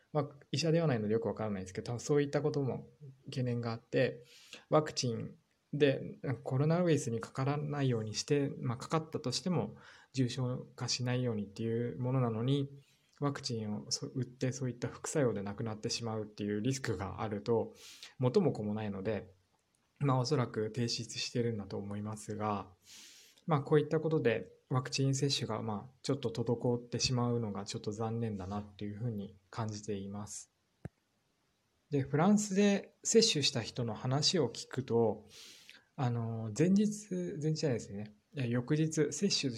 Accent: native